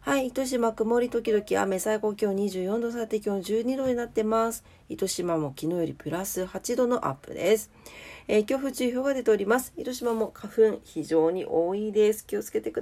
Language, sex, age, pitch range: Japanese, female, 40-59, 180-245 Hz